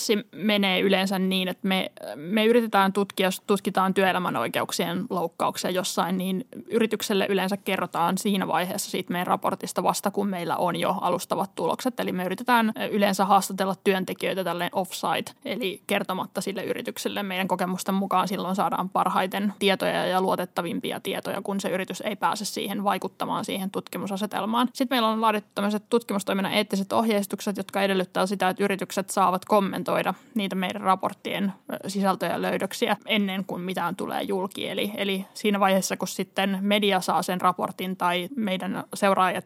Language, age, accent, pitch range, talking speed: Finnish, 20-39, native, 190-220 Hz, 150 wpm